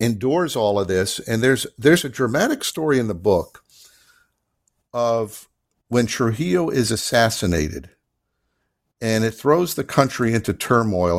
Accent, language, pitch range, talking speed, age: American, English, 105-130 Hz, 135 wpm, 50-69